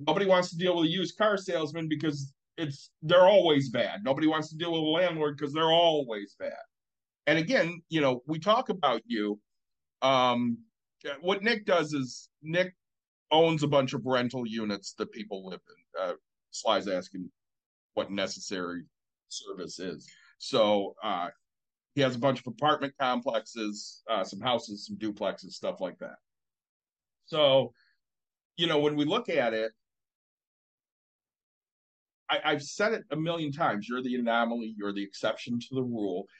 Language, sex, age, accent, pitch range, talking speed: English, male, 50-69, American, 125-175 Hz, 160 wpm